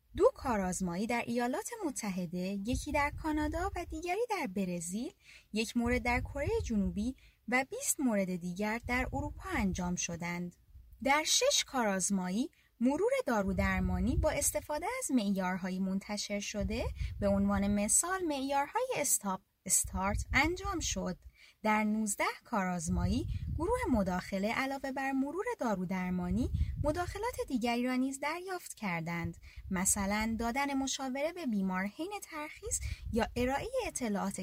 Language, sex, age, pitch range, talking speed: Persian, female, 20-39, 195-300 Hz, 125 wpm